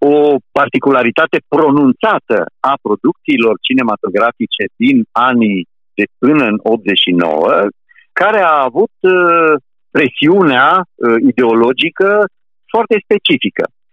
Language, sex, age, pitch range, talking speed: Romanian, male, 50-69, 125-200 Hz, 80 wpm